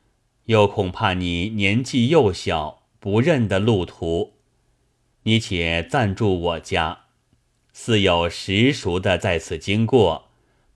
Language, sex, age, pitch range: Chinese, male, 30-49, 100-125 Hz